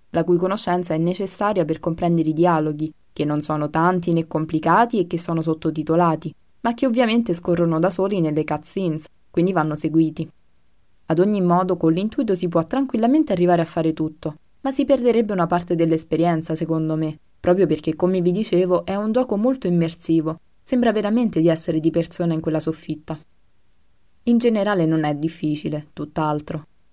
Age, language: 20-39, Italian